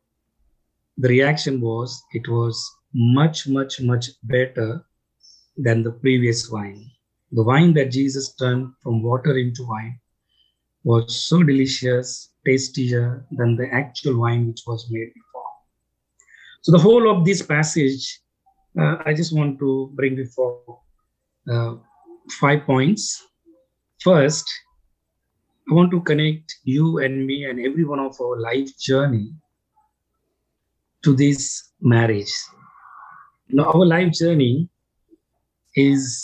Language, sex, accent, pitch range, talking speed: English, male, Indian, 125-160 Hz, 120 wpm